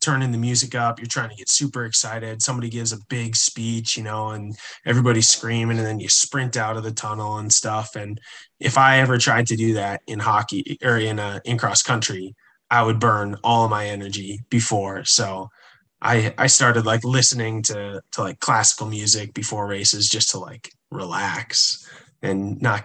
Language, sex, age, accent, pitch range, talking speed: English, male, 20-39, American, 110-125 Hz, 190 wpm